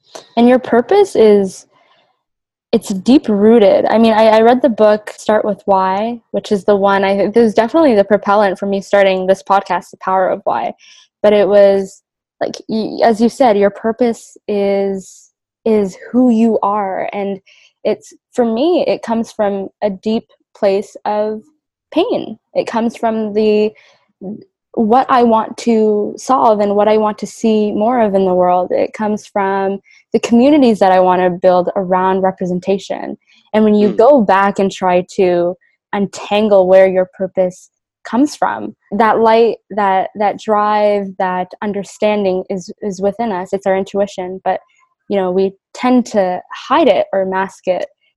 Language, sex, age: English, female, 10-29